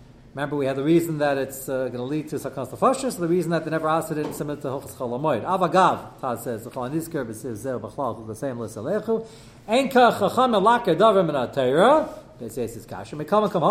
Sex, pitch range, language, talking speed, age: male, 130-180 Hz, English, 120 wpm, 40-59